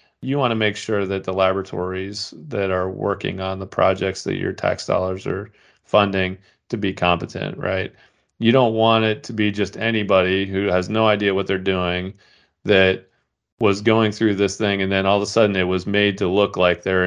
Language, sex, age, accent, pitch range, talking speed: English, male, 40-59, American, 90-100 Hz, 205 wpm